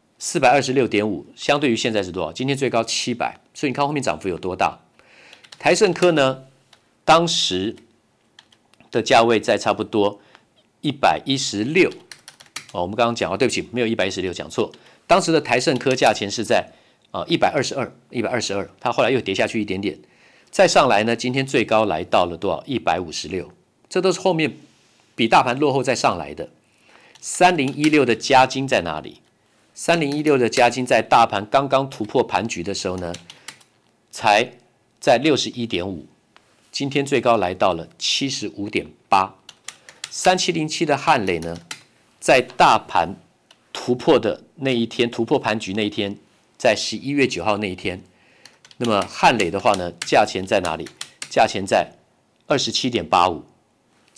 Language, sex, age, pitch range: Chinese, male, 50-69, 105-140 Hz